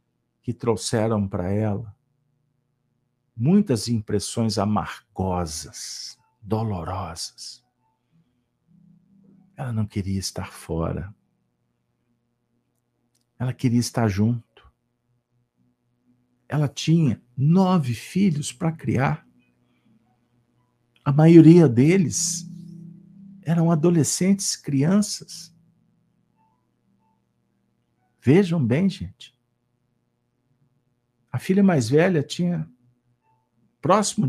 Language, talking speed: Portuguese, 65 wpm